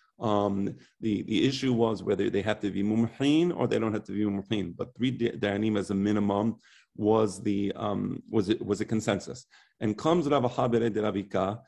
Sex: male